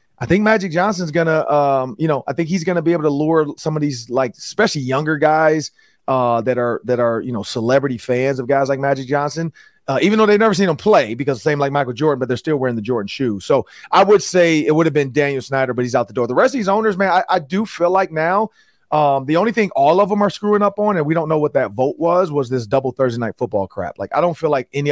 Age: 30-49